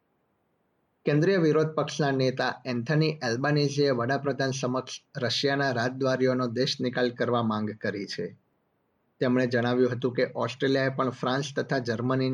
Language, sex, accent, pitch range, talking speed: Gujarati, male, native, 120-135 Hz, 90 wpm